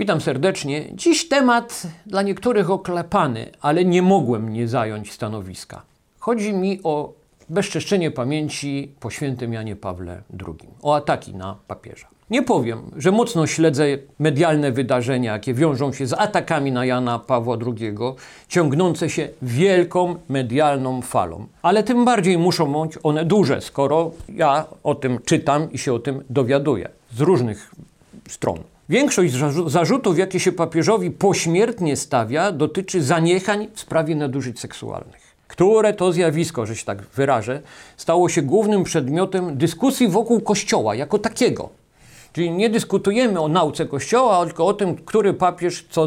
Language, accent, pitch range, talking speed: Polish, native, 140-190 Hz, 140 wpm